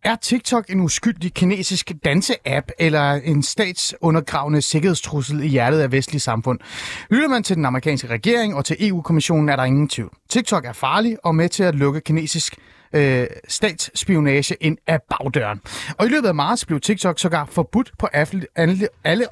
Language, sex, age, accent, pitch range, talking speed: Danish, male, 30-49, native, 130-190 Hz, 165 wpm